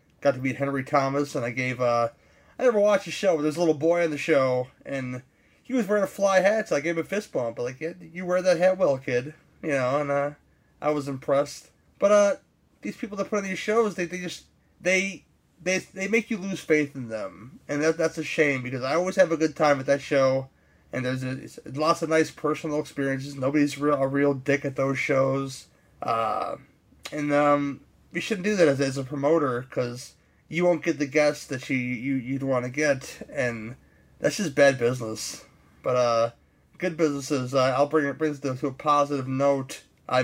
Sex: male